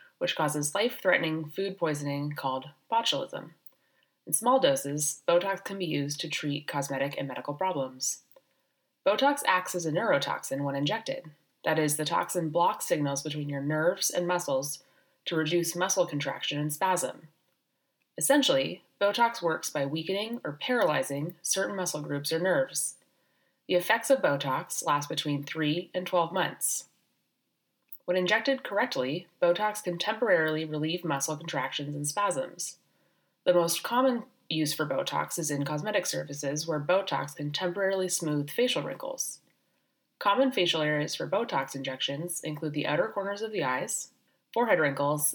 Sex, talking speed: female, 145 wpm